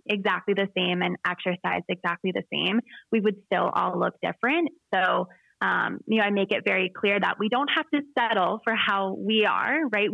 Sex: female